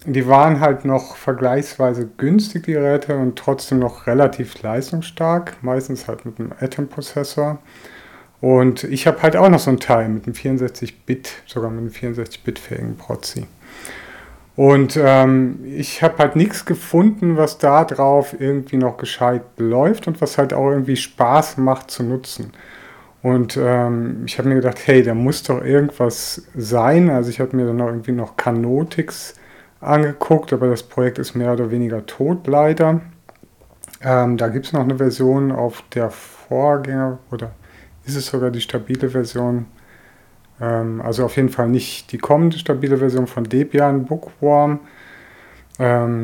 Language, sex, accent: German, male, German